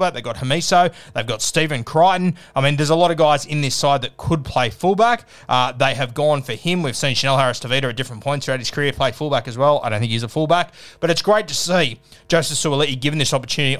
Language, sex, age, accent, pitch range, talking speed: English, male, 20-39, Australian, 125-155 Hz, 250 wpm